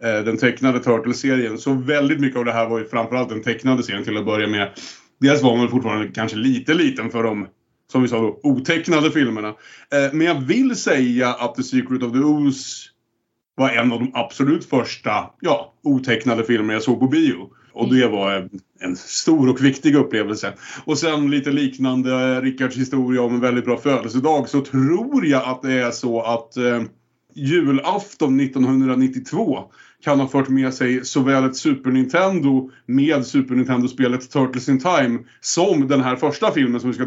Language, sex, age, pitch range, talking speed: Swedish, male, 30-49, 120-140 Hz, 180 wpm